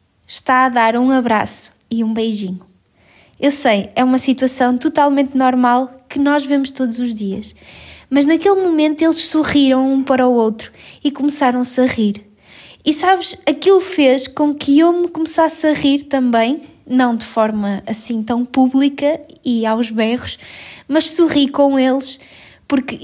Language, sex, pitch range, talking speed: Portuguese, female, 245-295 Hz, 155 wpm